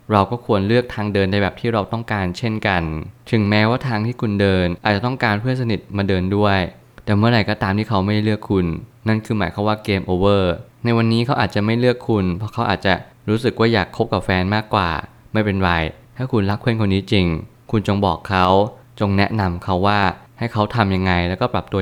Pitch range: 95-115 Hz